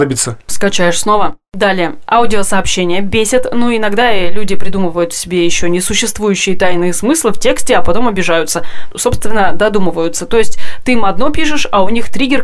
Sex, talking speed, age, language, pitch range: female, 165 wpm, 20-39, Russian, 190-240 Hz